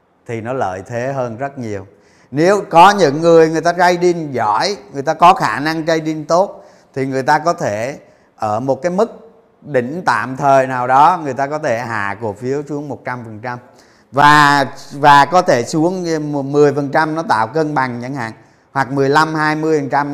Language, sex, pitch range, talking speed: Vietnamese, male, 120-165 Hz, 175 wpm